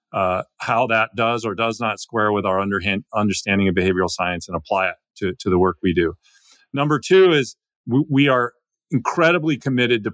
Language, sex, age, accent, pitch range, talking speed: English, male, 40-59, American, 105-140 Hz, 195 wpm